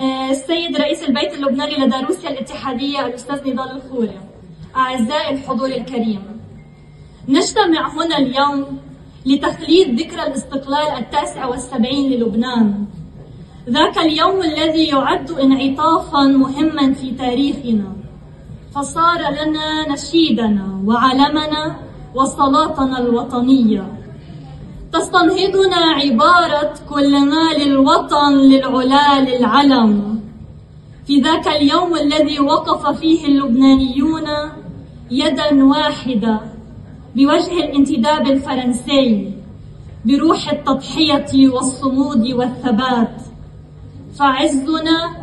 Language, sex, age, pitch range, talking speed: Arabic, female, 20-39, 250-300 Hz, 80 wpm